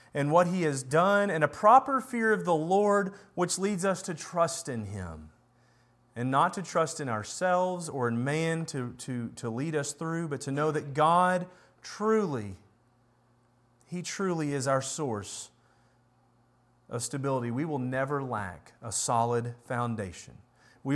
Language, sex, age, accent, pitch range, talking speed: English, male, 40-59, American, 120-165 Hz, 155 wpm